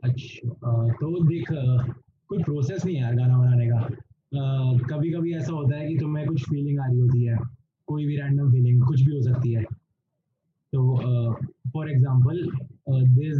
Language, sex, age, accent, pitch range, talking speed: Hindi, male, 20-39, native, 130-160 Hz, 160 wpm